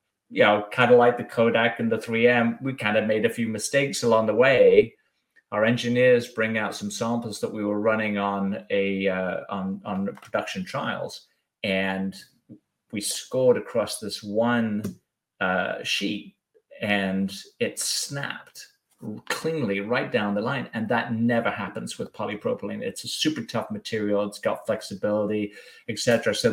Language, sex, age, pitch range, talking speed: English, male, 30-49, 105-120 Hz, 155 wpm